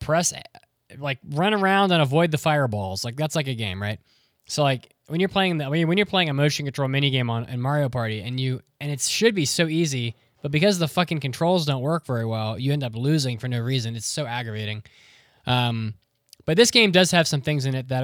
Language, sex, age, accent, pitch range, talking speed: English, male, 20-39, American, 115-155 Hz, 235 wpm